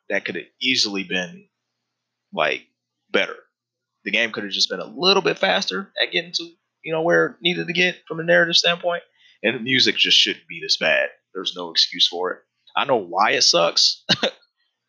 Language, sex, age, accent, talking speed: English, male, 20-39, American, 200 wpm